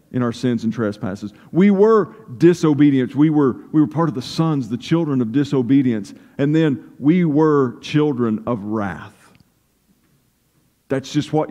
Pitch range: 130-170 Hz